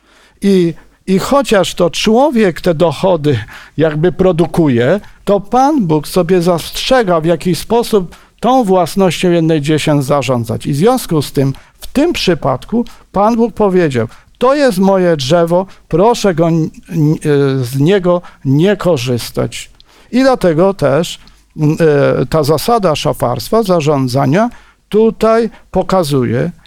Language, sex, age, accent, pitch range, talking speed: Polish, male, 50-69, native, 150-210 Hz, 110 wpm